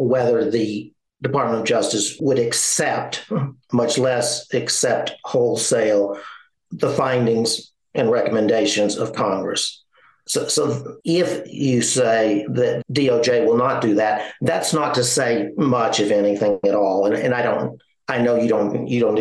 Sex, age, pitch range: male, 50-69, 105-135 Hz